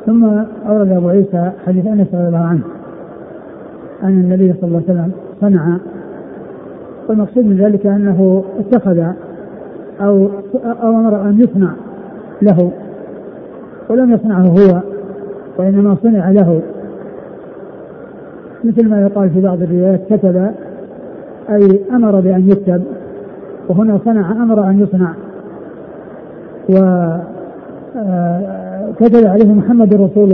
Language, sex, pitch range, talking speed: Arabic, male, 185-205 Hz, 100 wpm